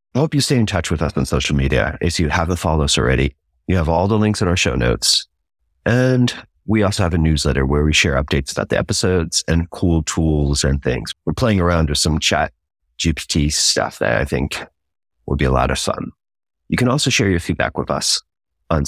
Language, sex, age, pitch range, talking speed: English, male, 30-49, 70-90 Hz, 225 wpm